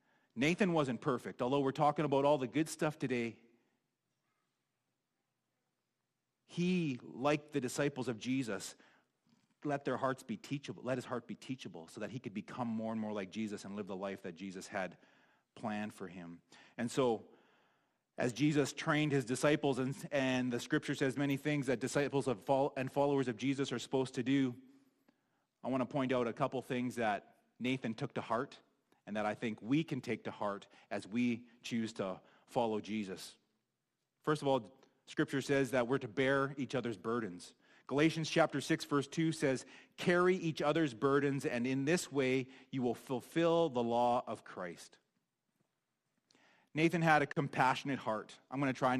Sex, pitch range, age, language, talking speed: male, 120-145 Hz, 30-49, English, 175 wpm